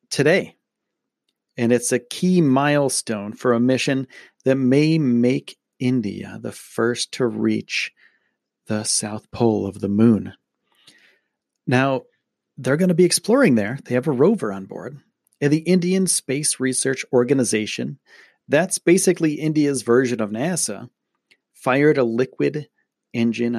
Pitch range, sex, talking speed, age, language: 115-150 Hz, male, 130 wpm, 40-59, English